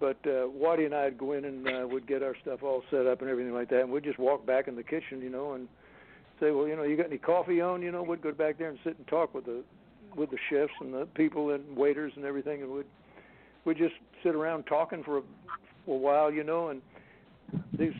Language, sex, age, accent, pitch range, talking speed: English, male, 60-79, American, 135-175 Hz, 255 wpm